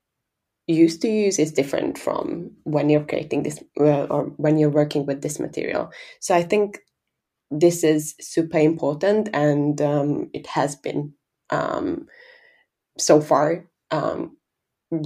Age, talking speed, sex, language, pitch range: 20-39, 130 wpm, female, English, 150-175 Hz